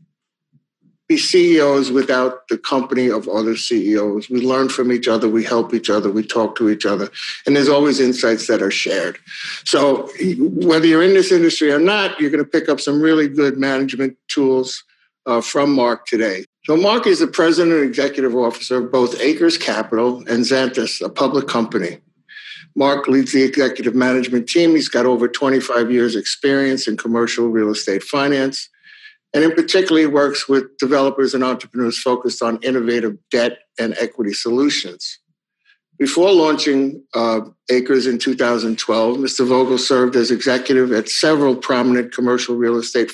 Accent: American